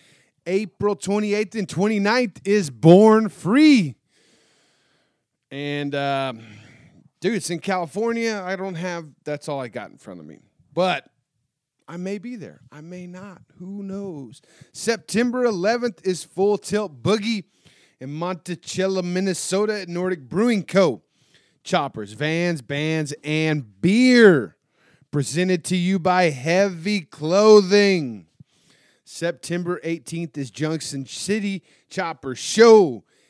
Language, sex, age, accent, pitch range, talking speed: English, male, 30-49, American, 145-195 Hz, 115 wpm